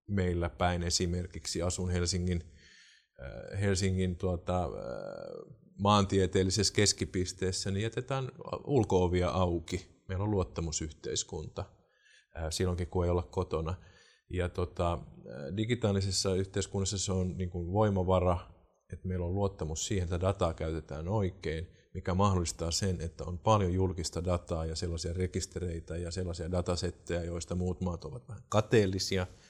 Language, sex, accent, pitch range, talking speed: Finnish, male, native, 85-95 Hz, 120 wpm